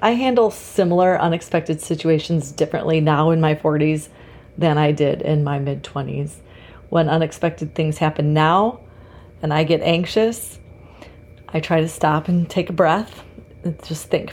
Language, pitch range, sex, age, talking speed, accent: English, 155-180 Hz, female, 30-49, 155 wpm, American